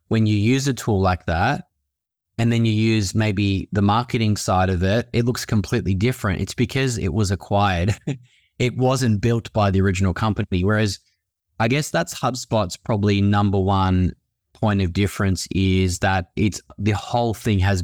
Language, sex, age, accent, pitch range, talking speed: English, male, 20-39, Australian, 95-115 Hz, 170 wpm